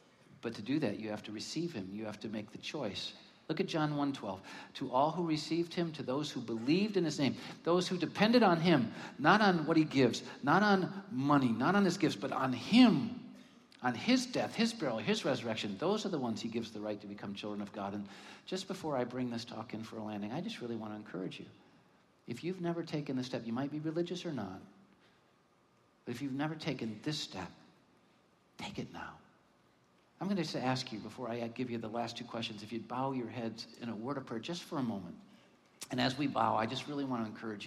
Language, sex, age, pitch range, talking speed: English, male, 50-69, 115-165 Hz, 235 wpm